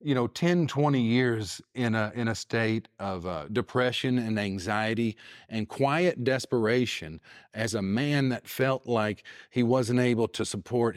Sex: male